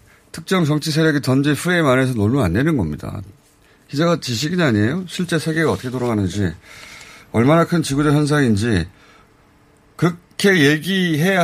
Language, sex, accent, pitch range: Korean, male, native, 100-150 Hz